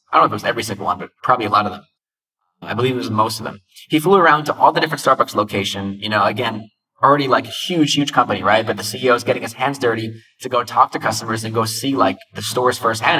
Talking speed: 275 wpm